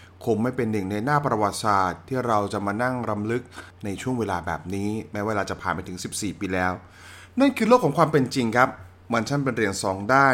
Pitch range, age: 90-125 Hz, 20-39